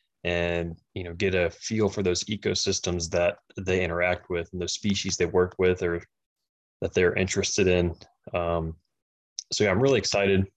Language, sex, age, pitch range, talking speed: English, male, 20-39, 85-95 Hz, 170 wpm